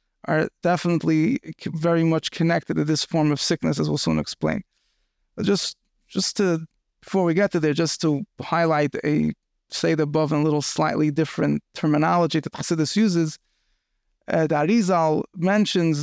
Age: 30-49